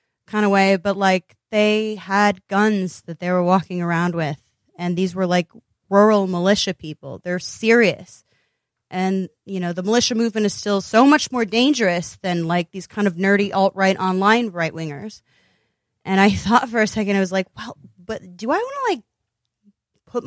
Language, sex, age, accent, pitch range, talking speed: English, female, 20-39, American, 170-215 Hz, 185 wpm